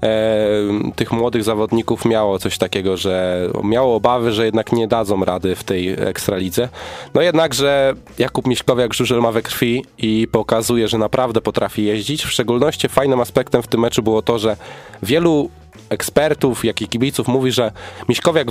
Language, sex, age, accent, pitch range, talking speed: Polish, male, 20-39, native, 105-125 Hz, 160 wpm